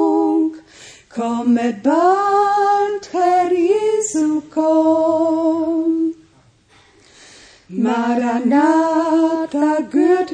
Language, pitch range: Romanian, 245-350 Hz